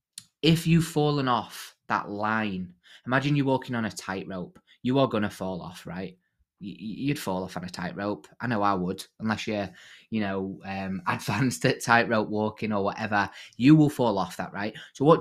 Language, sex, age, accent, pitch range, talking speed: English, male, 20-39, British, 100-125 Hz, 190 wpm